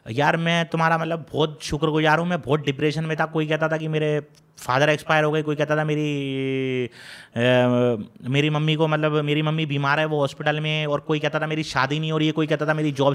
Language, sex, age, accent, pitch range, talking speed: Hindi, male, 30-49, native, 155-215 Hz, 240 wpm